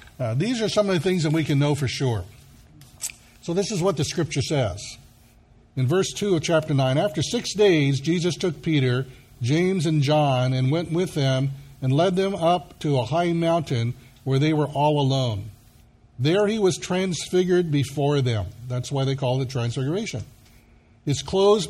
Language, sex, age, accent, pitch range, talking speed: English, male, 60-79, American, 130-180 Hz, 185 wpm